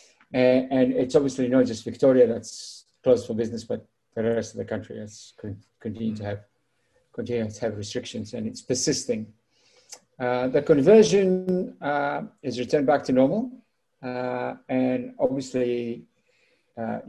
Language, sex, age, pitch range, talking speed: English, male, 50-69, 115-140 Hz, 140 wpm